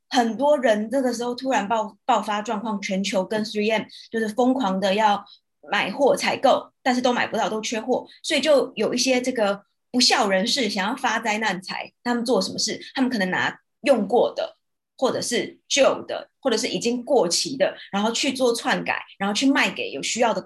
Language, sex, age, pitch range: Chinese, female, 20-39, 205-260 Hz